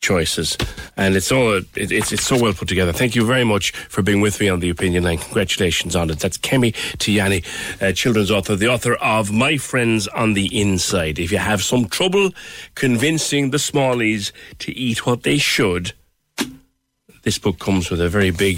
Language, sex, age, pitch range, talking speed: English, male, 60-79, 95-140 Hz, 195 wpm